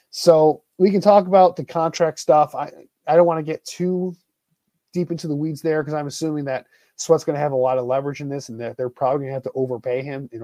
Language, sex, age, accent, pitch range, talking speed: English, male, 30-49, American, 125-165 Hz, 260 wpm